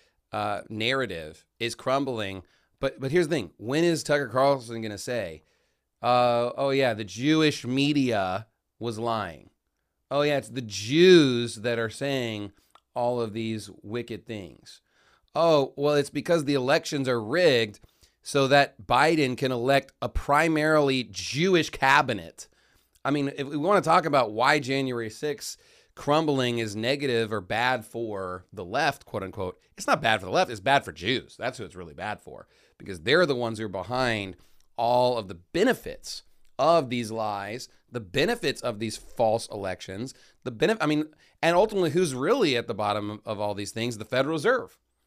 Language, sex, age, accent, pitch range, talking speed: English, male, 30-49, American, 105-135 Hz, 170 wpm